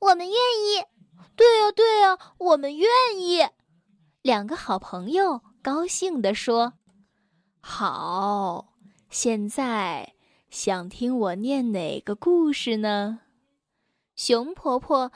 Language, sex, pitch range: Chinese, female, 210-320 Hz